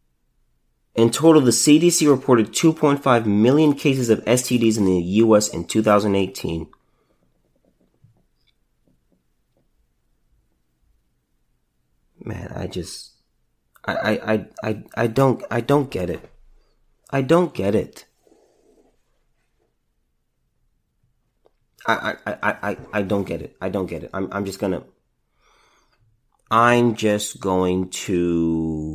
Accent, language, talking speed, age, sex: American, English, 110 wpm, 30-49, male